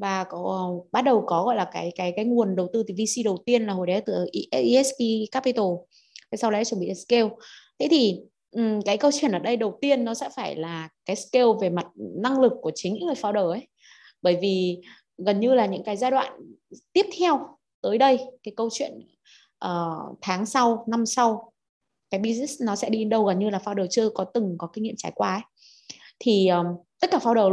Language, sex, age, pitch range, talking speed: Vietnamese, female, 20-39, 195-255 Hz, 215 wpm